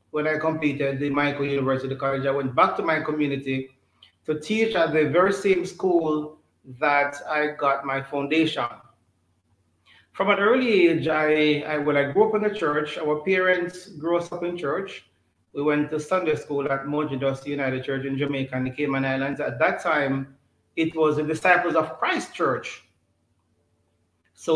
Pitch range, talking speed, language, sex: 135-160 Hz, 170 wpm, English, male